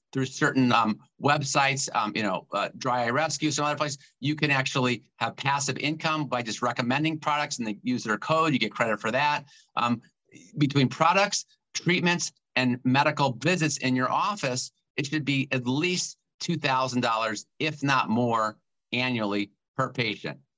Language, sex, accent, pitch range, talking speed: English, male, American, 115-140 Hz, 165 wpm